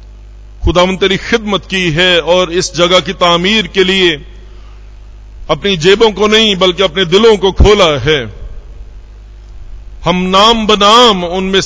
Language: Hindi